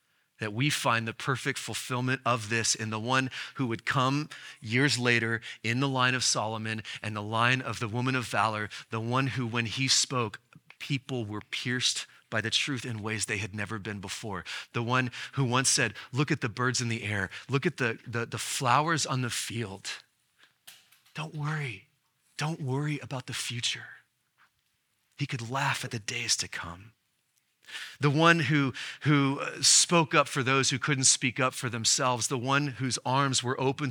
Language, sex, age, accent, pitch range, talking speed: English, male, 30-49, American, 115-135 Hz, 185 wpm